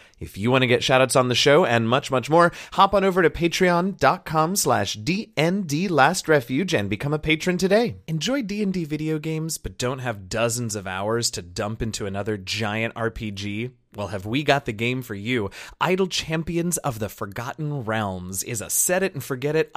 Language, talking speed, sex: English, 175 wpm, male